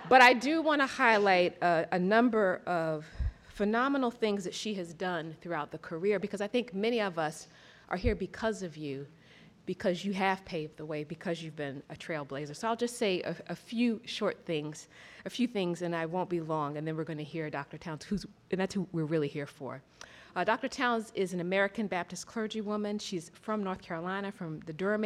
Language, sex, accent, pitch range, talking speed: English, female, American, 165-215 Hz, 210 wpm